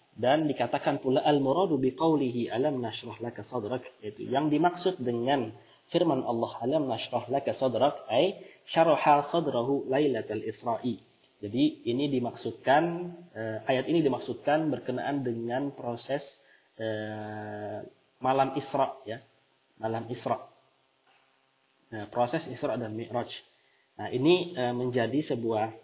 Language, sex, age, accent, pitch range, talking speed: Indonesian, male, 30-49, native, 115-145 Hz, 115 wpm